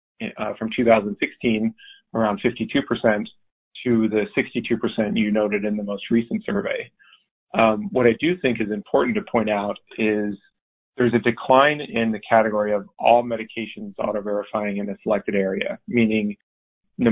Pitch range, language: 105-125 Hz, English